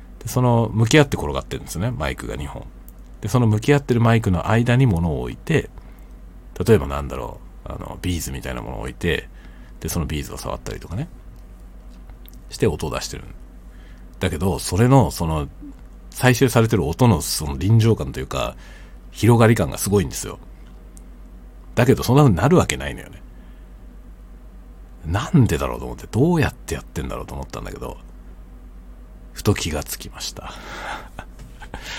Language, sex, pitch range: Japanese, male, 65-110 Hz